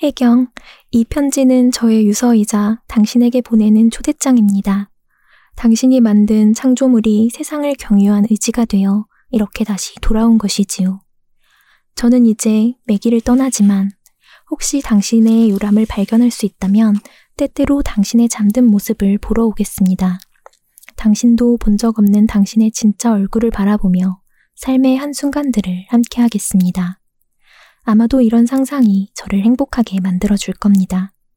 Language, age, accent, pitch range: Korean, 20-39, native, 200-240 Hz